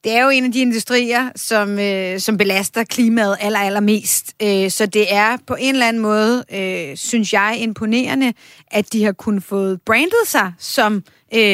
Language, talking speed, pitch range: Danish, 160 wpm, 200-245 Hz